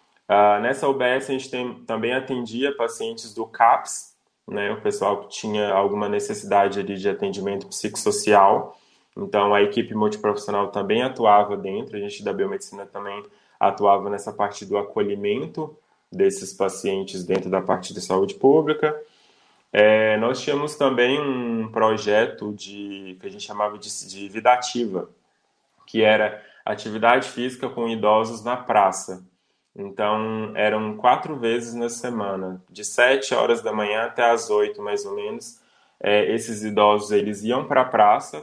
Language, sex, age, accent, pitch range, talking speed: Portuguese, male, 20-39, Brazilian, 105-130 Hz, 150 wpm